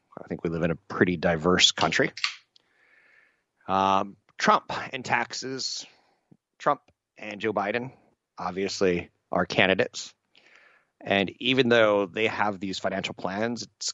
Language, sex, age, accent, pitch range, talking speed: English, male, 30-49, American, 90-110 Hz, 125 wpm